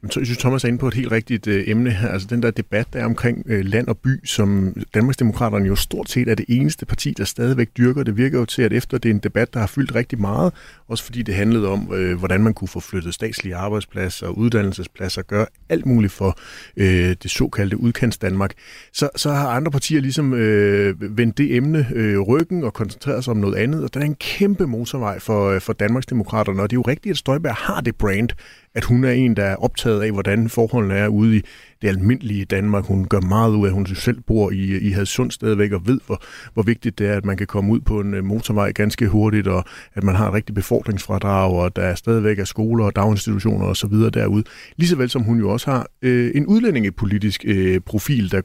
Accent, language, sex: native, Danish, male